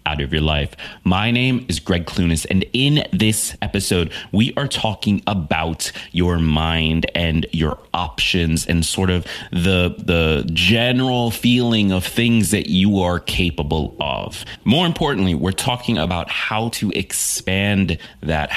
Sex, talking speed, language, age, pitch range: male, 145 wpm, English, 30-49, 90-120 Hz